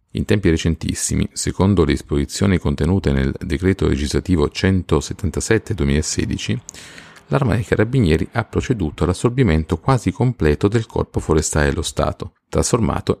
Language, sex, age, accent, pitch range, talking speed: Italian, male, 40-59, native, 75-100 Hz, 115 wpm